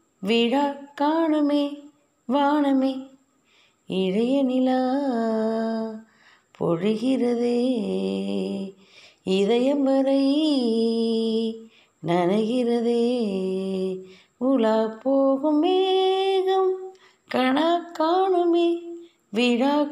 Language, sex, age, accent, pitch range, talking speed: Tamil, female, 20-39, native, 240-330 Hz, 40 wpm